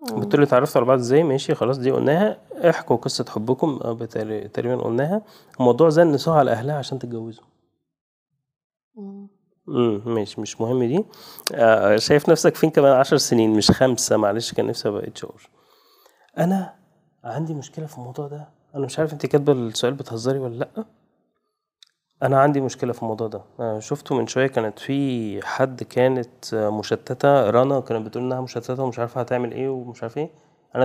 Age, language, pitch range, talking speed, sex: 30-49, Arabic, 110-145 Hz, 160 wpm, male